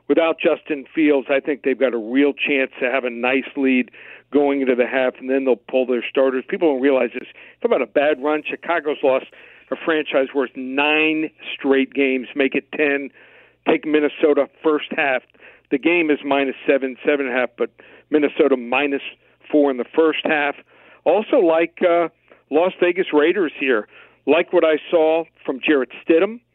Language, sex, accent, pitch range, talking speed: English, male, American, 135-165 Hz, 175 wpm